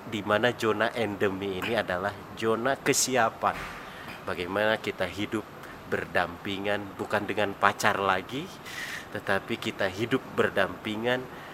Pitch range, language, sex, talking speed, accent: 90-115 Hz, Indonesian, male, 105 wpm, native